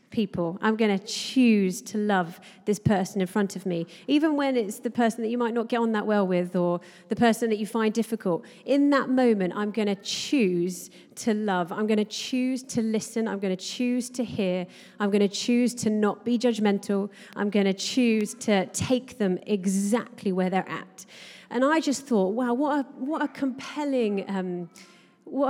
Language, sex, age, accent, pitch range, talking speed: English, female, 30-49, British, 190-235 Hz, 200 wpm